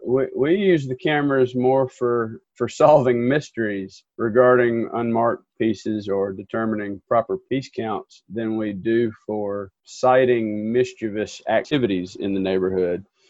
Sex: male